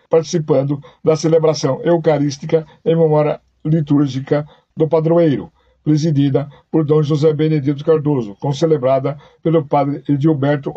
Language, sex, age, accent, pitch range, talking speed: Portuguese, male, 60-79, Brazilian, 145-160 Hz, 110 wpm